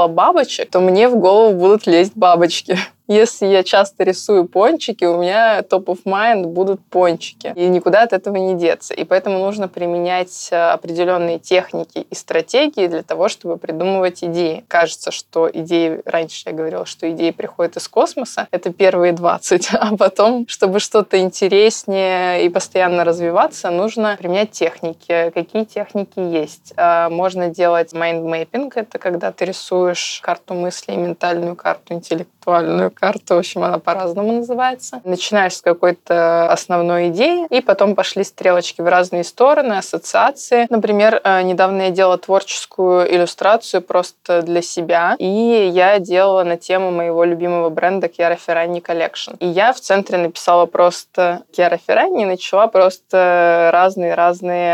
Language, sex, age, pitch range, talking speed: Russian, female, 20-39, 175-200 Hz, 145 wpm